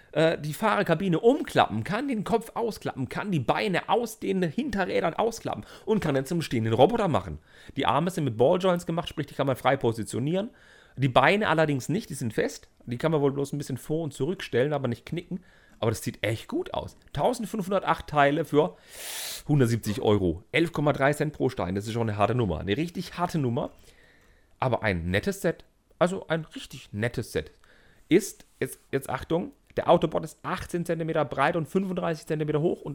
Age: 40-59